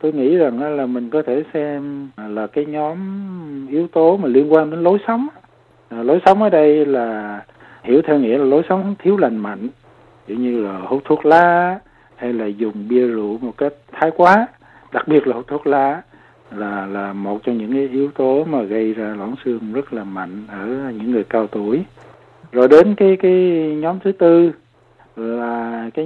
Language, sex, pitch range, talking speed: Vietnamese, male, 115-155 Hz, 190 wpm